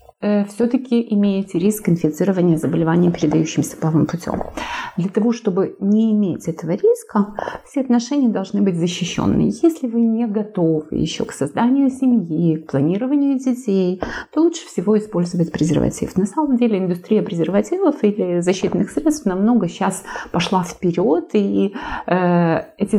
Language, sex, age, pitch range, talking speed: Romanian, female, 30-49, 170-220 Hz, 135 wpm